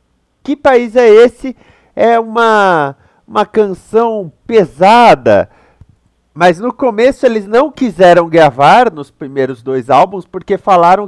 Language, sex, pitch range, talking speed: Portuguese, male, 165-215 Hz, 120 wpm